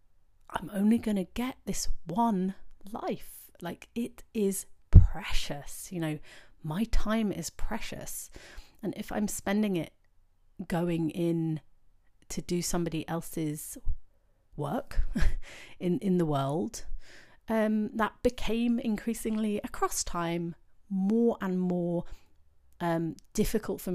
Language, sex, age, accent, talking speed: English, female, 30-49, British, 115 wpm